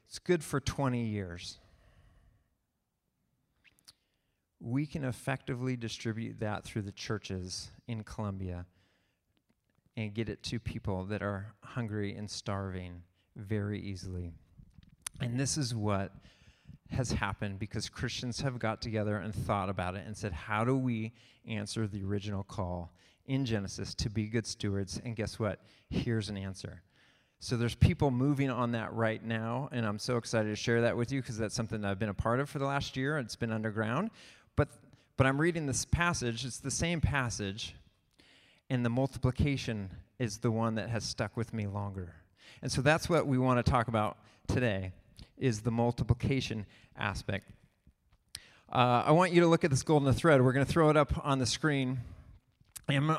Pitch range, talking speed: 105-130 Hz, 170 wpm